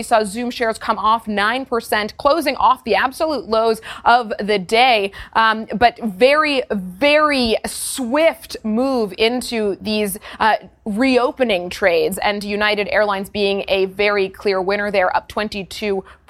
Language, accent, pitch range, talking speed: English, American, 215-255 Hz, 135 wpm